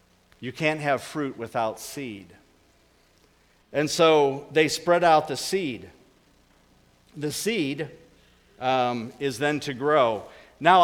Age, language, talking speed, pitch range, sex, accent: 50-69, English, 115 wpm, 120-155 Hz, male, American